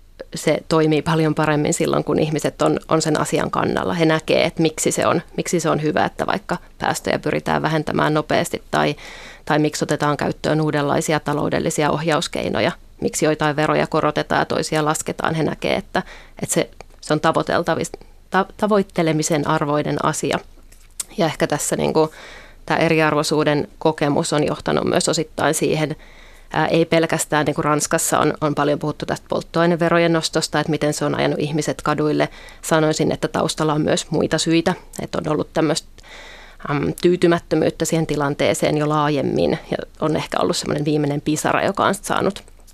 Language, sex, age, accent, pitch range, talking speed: Finnish, female, 30-49, native, 150-165 Hz, 150 wpm